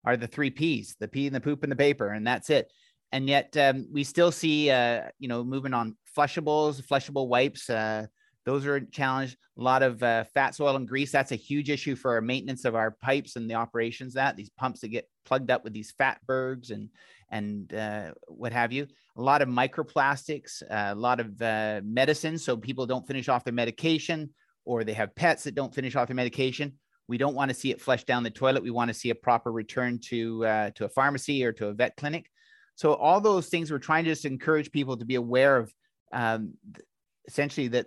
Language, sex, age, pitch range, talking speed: English, male, 30-49, 120-145 Hz, 225 wpm